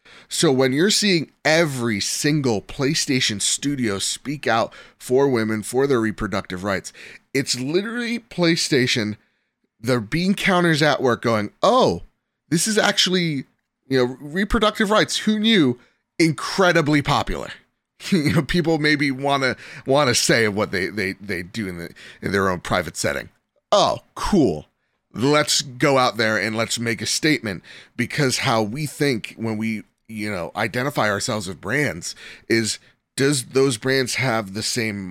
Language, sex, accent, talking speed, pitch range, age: English, male, American, 150 wpm, 115-165 Hz, 30-49